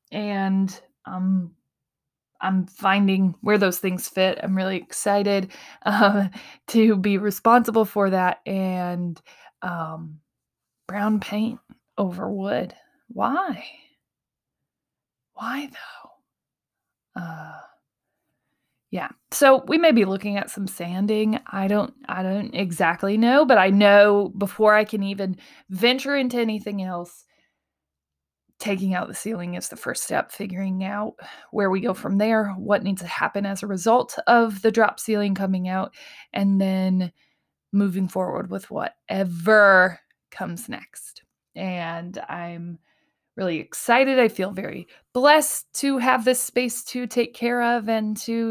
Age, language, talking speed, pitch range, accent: 20-39, English, 130 wpm, 185-220 Hz, American